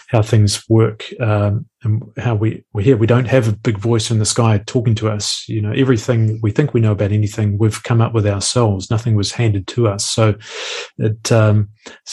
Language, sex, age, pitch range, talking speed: English, male, 30-49, 110-120 Hz, 215 wpm